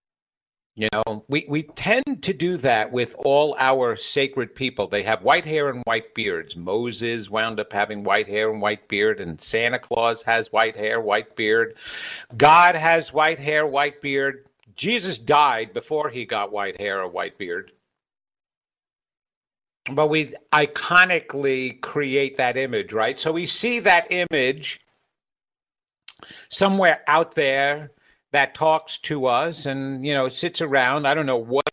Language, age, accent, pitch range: English, 50-69, American, 115-155 Hz